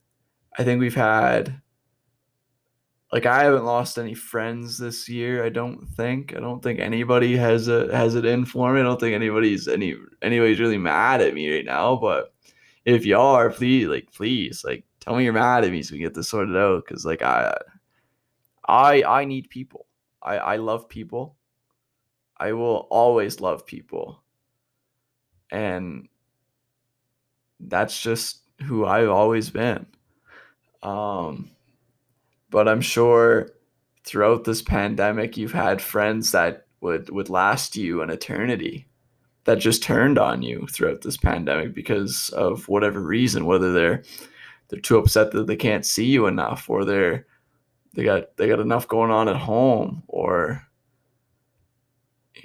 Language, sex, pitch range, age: English, male, 110-125 Hz, 20-39